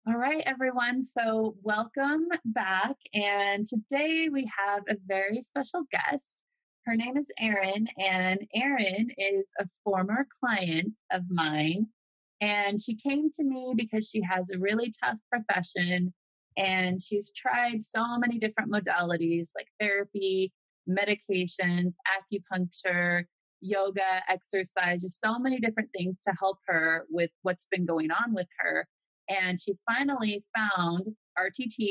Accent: American